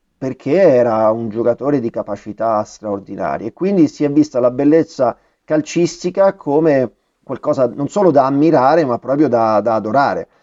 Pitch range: 115-150 Hz